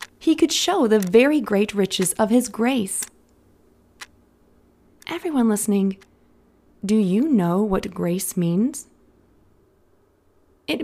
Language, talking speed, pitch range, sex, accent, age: English, 105 wpm, 175-250 Hz, female, American, 20-39